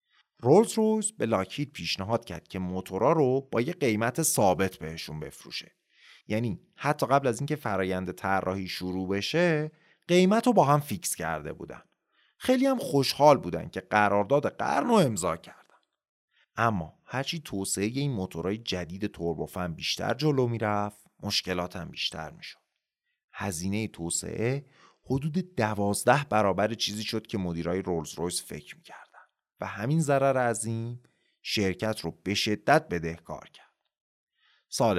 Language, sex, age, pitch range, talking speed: Persian, male, 30-49, 90-135 Hz, 135 wpm